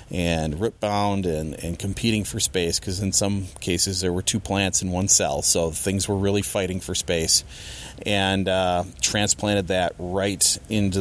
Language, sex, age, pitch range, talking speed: English, male, 30-49, 90-110 Hz, 175 wpm